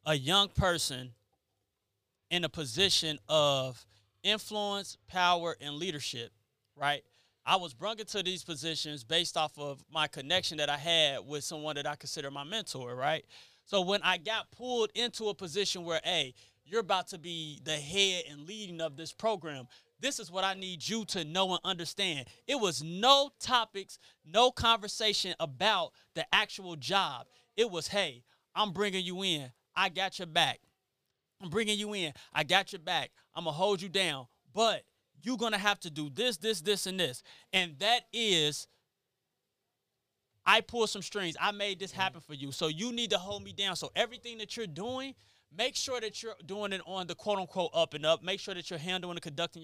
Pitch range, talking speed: 155-205 Hz, 185 wpm